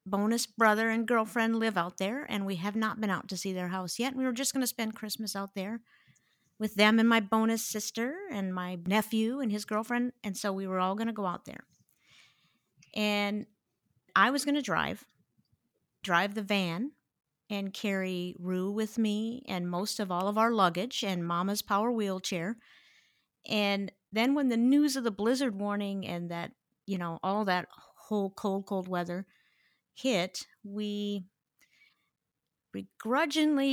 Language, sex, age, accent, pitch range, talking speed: English, female, 50-69, American, 180-230 Hz, 170 wpm